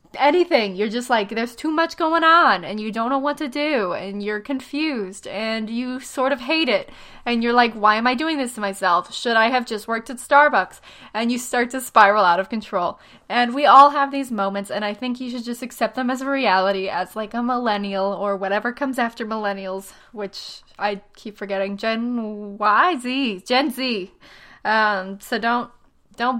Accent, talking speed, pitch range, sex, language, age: American, 200 wpm, 205-260 Hz, female, English, 20-39